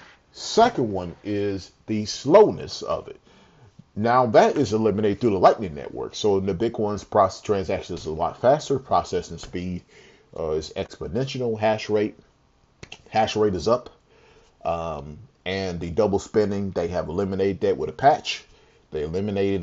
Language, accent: English, American